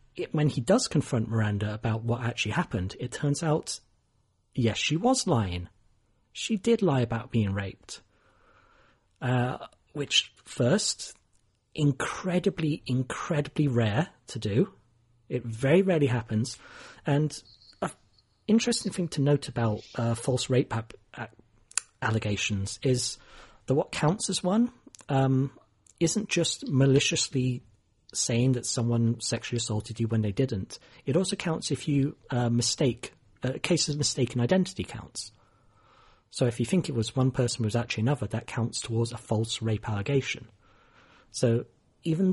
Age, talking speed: 40-59, 140 wpm